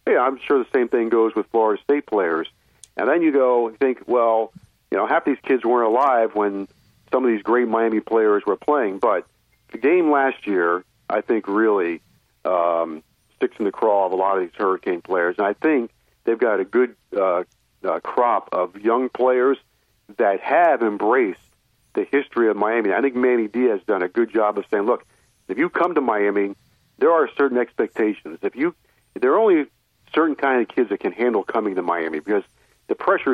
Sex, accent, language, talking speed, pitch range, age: male, American, English, 205 wpm, 105-135 Hz, 50-69